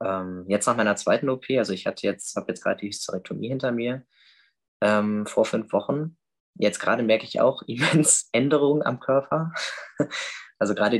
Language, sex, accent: German, male, German